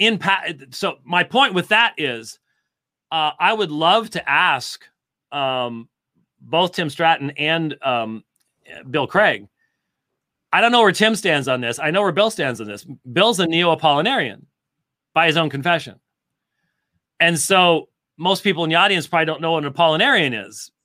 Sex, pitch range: male, 140-190 Hz